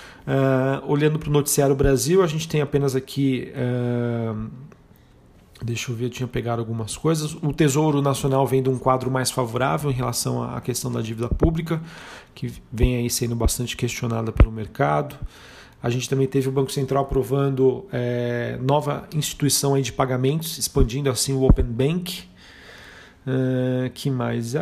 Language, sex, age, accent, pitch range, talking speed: Portuguese, male, 40-59, Brazilian, 125-145 Hz, 165 wpm